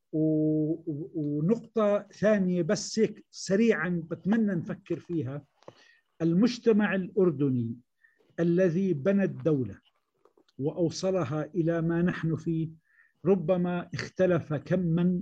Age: 50-69